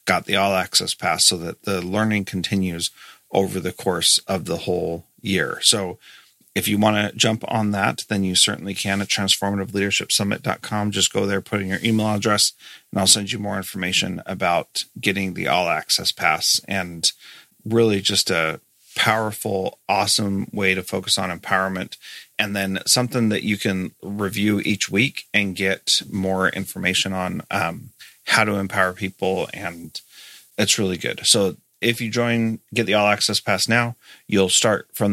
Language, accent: English, American